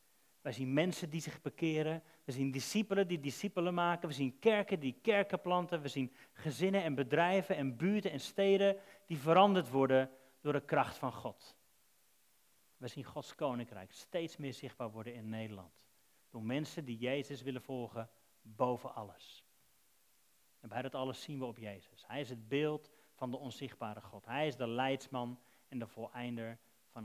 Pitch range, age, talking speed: 125-165 Hz, 40-59, 170 wpm